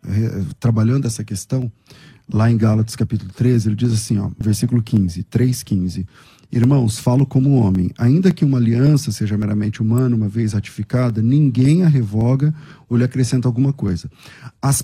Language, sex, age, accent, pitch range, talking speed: Portuguese, male, 40-59, Brazilian, 115-150 Hz, 160 wpm